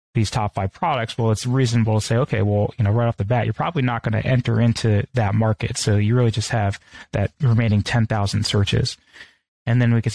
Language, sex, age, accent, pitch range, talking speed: English, male, 20-39, American, 105-120 Hz, 230 wpm